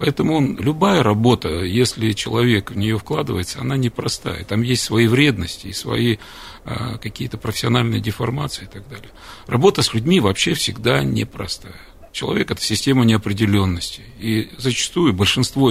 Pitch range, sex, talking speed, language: 100-125 Hz, male, 135 wpm, Russian